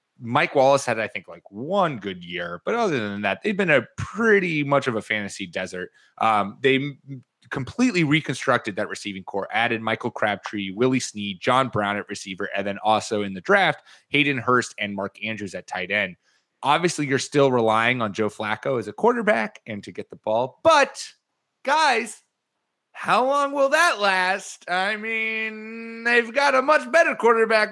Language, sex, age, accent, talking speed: English, male, 30-49, American, 180 wpm